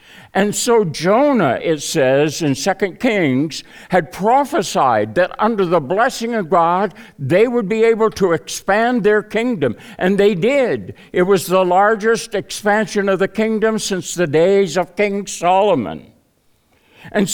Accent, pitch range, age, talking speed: American, 155-220 Hz, 60-79, 145 wpm